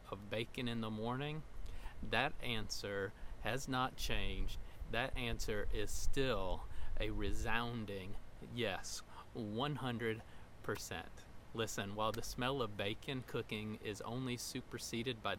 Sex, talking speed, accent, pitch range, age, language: male, 115 wpm, American, 105-130 Hz, 40-59, English